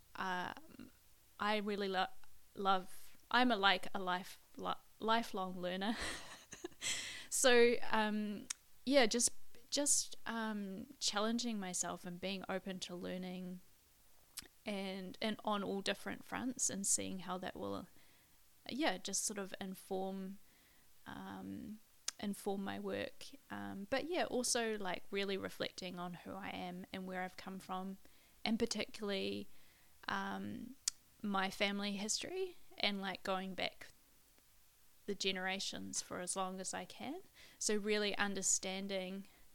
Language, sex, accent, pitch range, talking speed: English, female, Australian, 185-215 Hz, 125 wpm